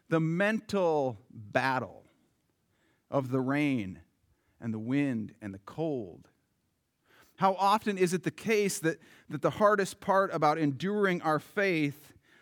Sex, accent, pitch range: male, American, 135-180 Hz